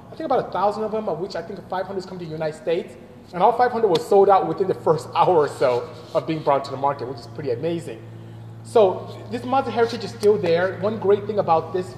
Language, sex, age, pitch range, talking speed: English, male, 30-49, 155-245 Hz, 260 wpm